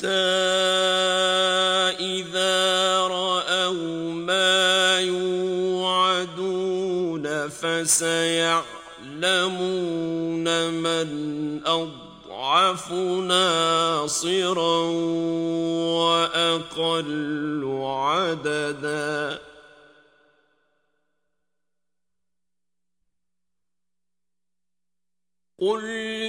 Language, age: Turkish, 50-69